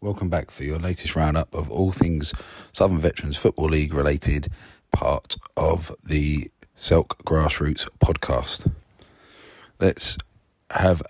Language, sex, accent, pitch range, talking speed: English, male, British, 80-95 Hz, 120 wpm